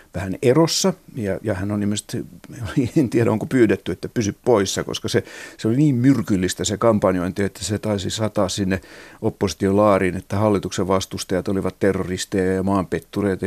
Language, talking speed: Finnish, 155 wpm